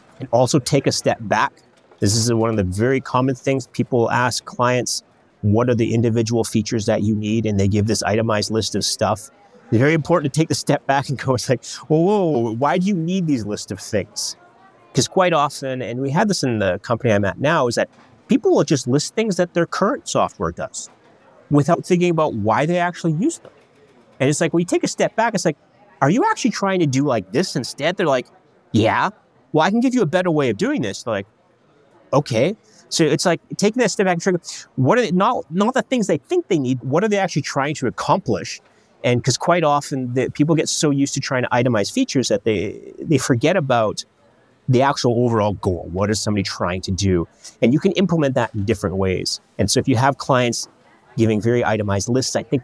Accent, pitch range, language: American, 110-165 Hz, English